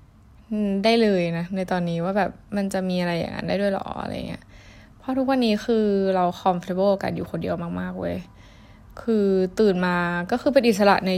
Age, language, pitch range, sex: 10-29, Thai, 180-225 Hz, female